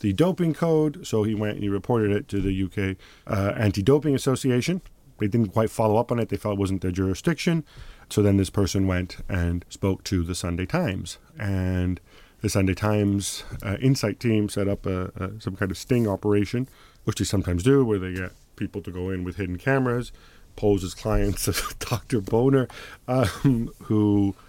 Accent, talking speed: American, 190 wpm